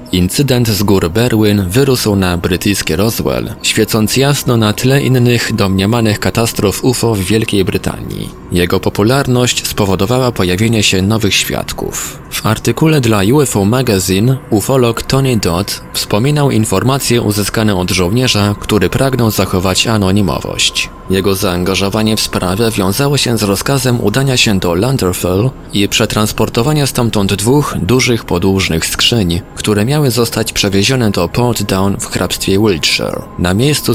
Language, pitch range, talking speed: Polish, 95-120 Hz, 135 wpm